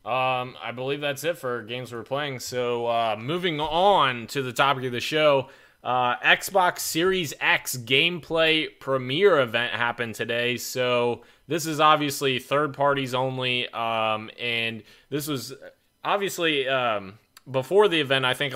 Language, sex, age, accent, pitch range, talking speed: English, male, 20-39, American, 110-140 Hz, 150 wpm